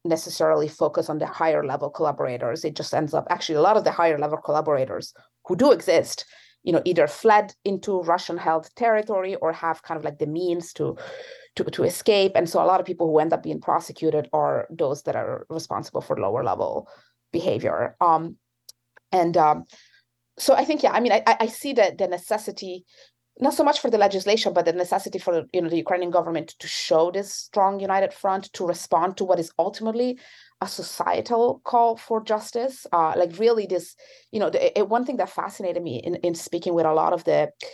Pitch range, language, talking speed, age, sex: 170-230 Hz, English, 205 wpm, 30-49, female